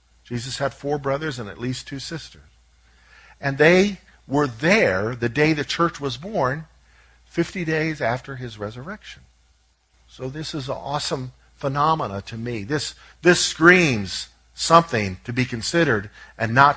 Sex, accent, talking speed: male, American, 145 wpm